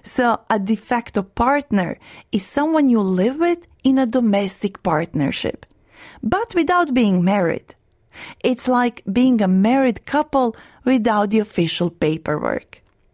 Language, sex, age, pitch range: Japanese, female, 30-49, 195-265 Hz